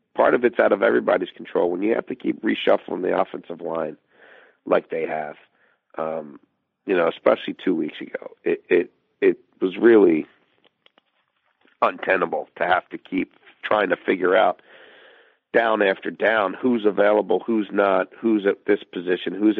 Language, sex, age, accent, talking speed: English, male, 50-69, American, 160 wpm